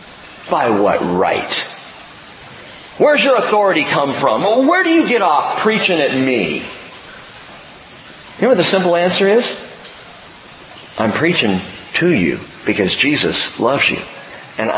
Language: English